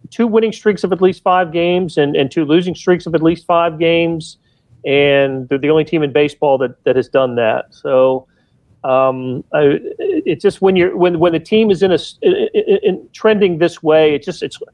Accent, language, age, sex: American, English, 40-59, male